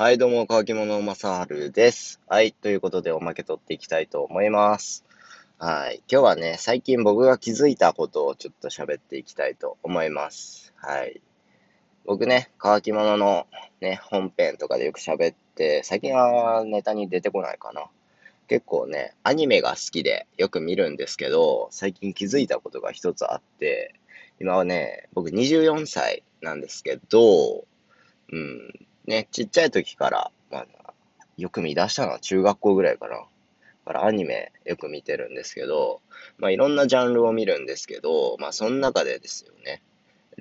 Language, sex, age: Japanese, male, 20-39